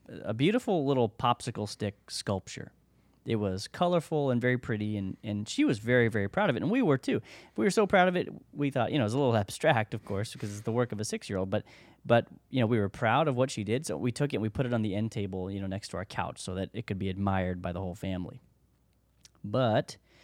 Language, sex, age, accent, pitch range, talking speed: English, male, 30-49, American, 100-130 Hz, 265 wpm